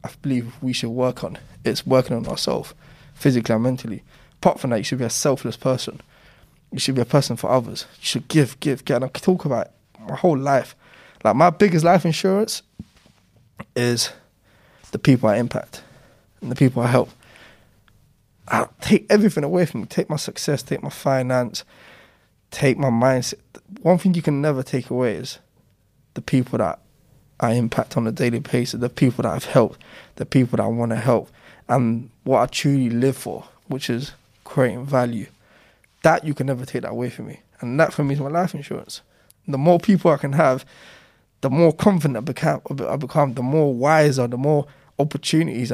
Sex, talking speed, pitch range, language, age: male, 195 wpm, 120-150 Hz, English, 20-39